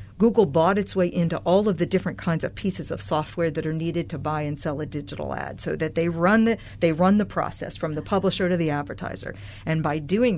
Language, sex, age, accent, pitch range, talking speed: English, female, 50-69, American, 150-180 Hz, 230 wpm